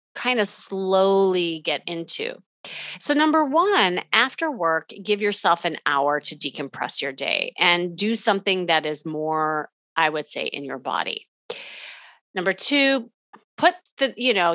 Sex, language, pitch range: female, English, 175-230 Hz